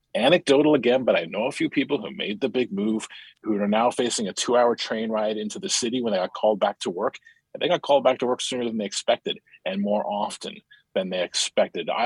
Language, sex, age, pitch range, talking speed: English, male, 40-59, 110-185 Hz, 245 wpm